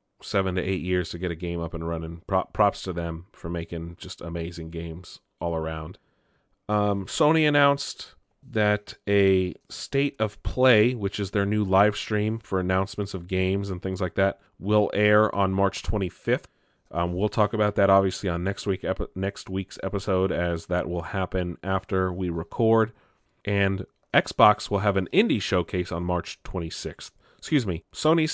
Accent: American